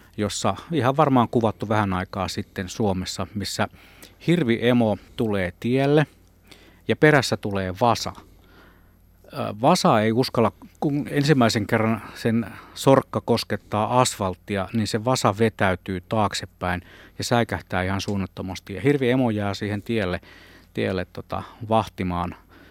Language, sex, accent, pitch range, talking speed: Finnish, male, native, 95-115 Hz, 115 wpm